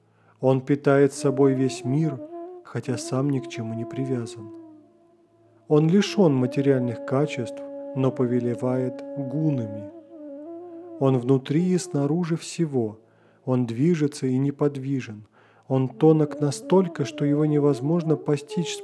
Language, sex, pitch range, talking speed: Russian, male, 130-185 Hz, 115 wpm